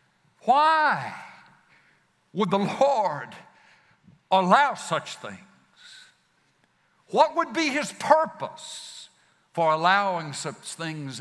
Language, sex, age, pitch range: English, male, 60-79, 155-220 Hz